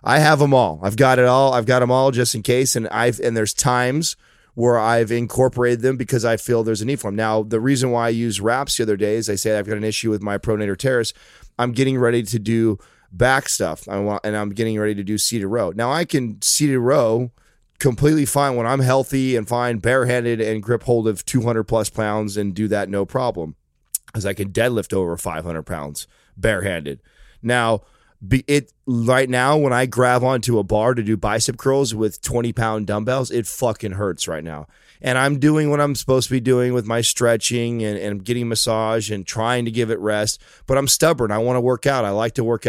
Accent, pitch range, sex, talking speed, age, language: American, 105-125 Hz, male, 225 wpm, 30-49, English